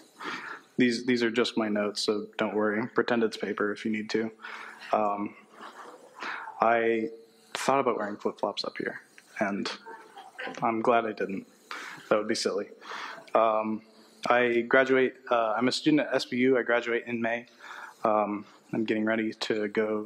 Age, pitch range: 20-39, 110-130 Hz